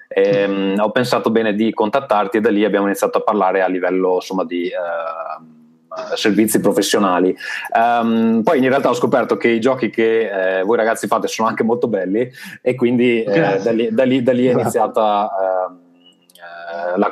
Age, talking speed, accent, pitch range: 20-39, 180 wpm, native, 95-115 Hz